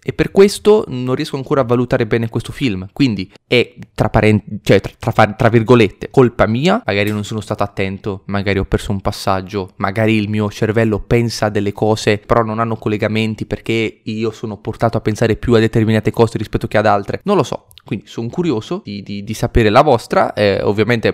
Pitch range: 105-140 Hz